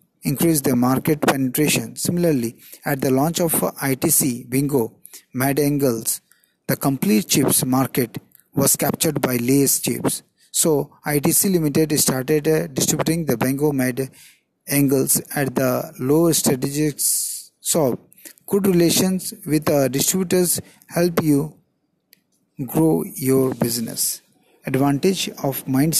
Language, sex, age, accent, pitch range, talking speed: Hindi, male, 50-69, native, 135-155 Hz, 115 wpm